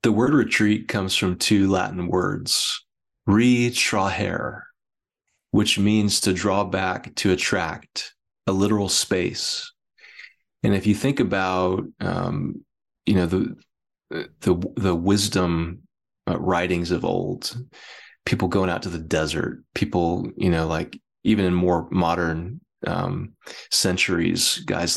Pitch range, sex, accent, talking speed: 90-105 Hz, male, American, 125 wpm